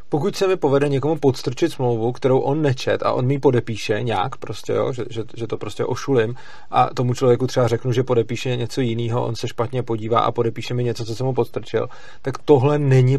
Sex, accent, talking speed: male, native, 215 wpm